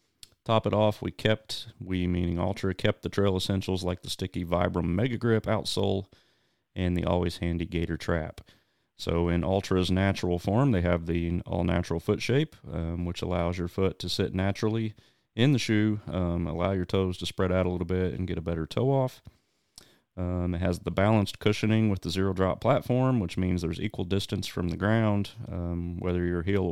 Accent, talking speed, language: American, 195 wpm, English